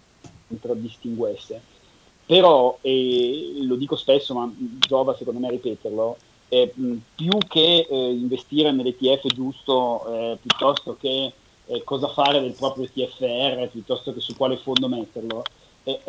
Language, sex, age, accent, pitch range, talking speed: Italian, male, 30-49, native, 125-145 Hz, 135 wpm